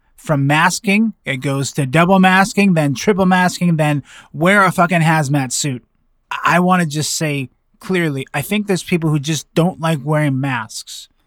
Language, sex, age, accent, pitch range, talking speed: English, male, 20-39, American, 135-170 Hz, 170 wpm